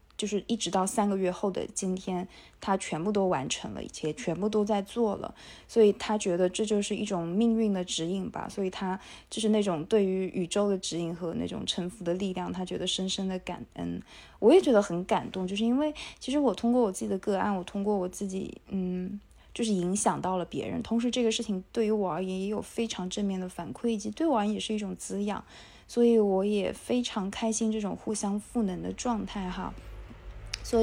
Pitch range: 185-220 Hz